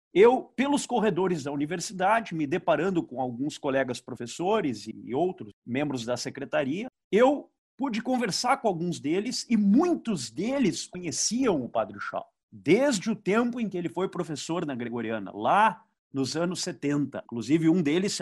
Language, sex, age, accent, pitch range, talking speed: Portuguese, male, 50-69, Brazilian, 155-225 Hz, 150 wpm